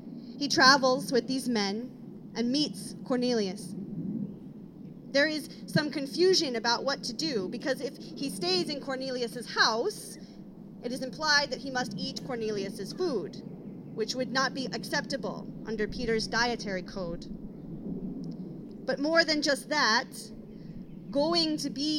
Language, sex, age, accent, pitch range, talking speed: English, female, 30-49, American, 205-260 Hz, 135 wpm